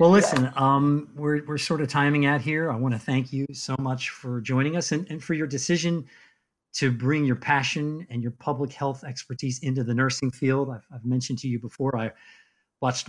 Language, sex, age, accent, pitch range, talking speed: English, male, 50-69, American, 120-145 Hz, 210 wpm